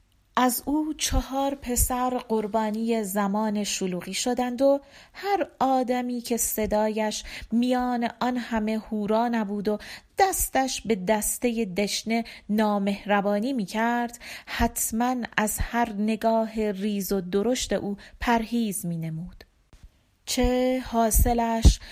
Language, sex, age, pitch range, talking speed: Persian, female, 40-59, 205-240 Hz, 105 wpm